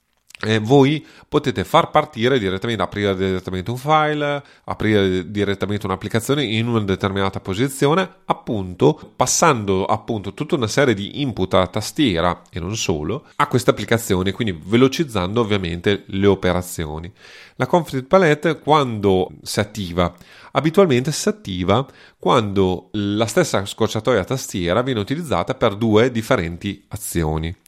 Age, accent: 30-49, native